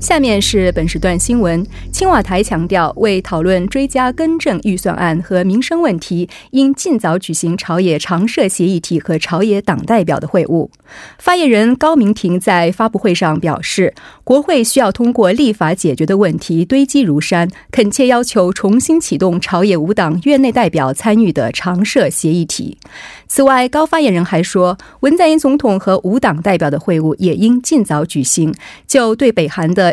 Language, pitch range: Korean, 170-250 Hz